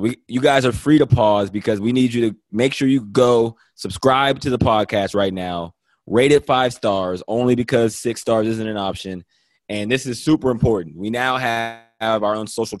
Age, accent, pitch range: 20-39, American, 110-130 Hz